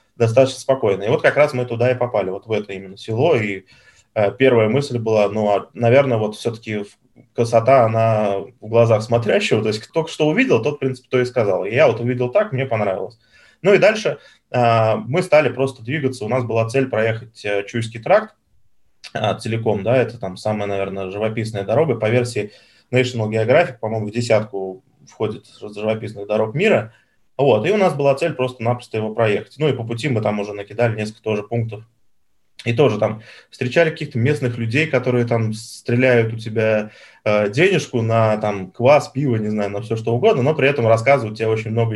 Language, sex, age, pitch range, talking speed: Russian, male, 20-39, 110-130 Hz, 190 wpm